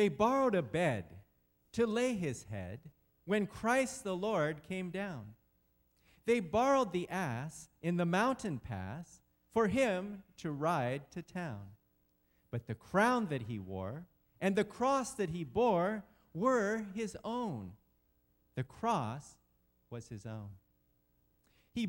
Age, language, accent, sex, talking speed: 40-59, English, American, male, 135 wpm